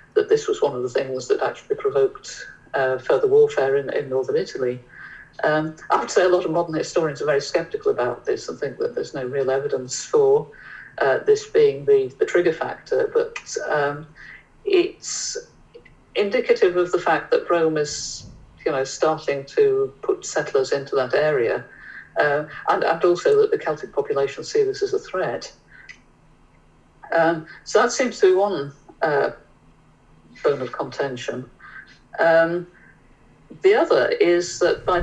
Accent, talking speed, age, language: British, 160 wpm, 50-69, English